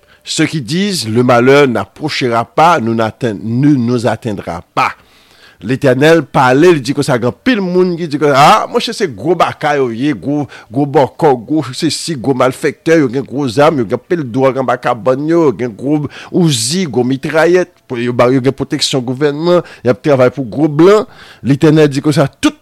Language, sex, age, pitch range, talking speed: French, male, 50-69, 125-165 Hz, 200 wpm